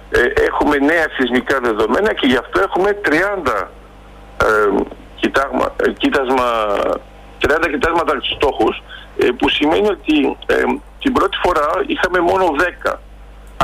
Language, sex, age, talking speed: Greek, male, 50-69, 90 wpm